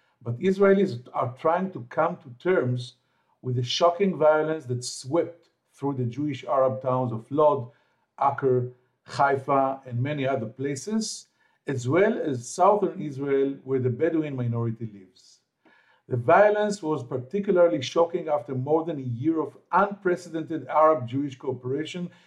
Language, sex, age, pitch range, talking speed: English, male, 50-69, 130-175 Hz, 135 wpm